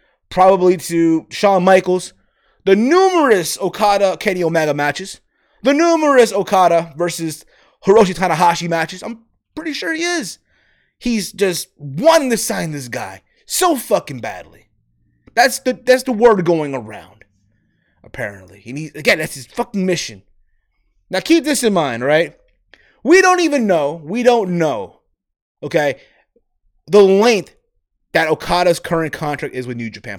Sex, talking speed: male, 140 wpm